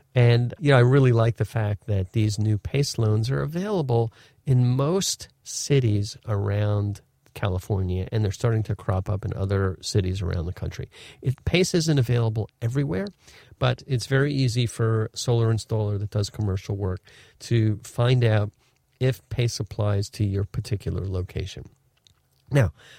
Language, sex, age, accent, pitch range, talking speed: English, male, 40-59, American, 100-130 Hz, 155 wpm